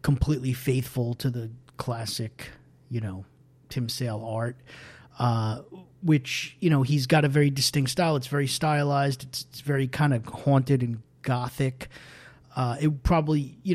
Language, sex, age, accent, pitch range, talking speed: English, male, 30-49, American, 130-155 Hz, 155 wpm